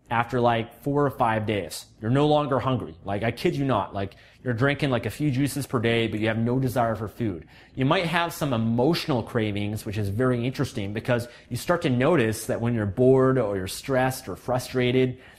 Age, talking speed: 30-49, 215 wpm